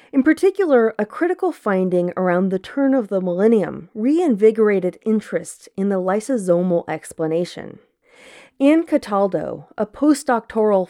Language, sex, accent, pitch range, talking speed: English, female, American, 180-255 Hz, 115 wpm